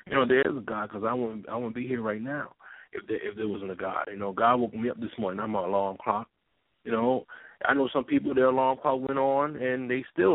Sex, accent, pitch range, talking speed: male, American, 125-190 Hz, 280 wpm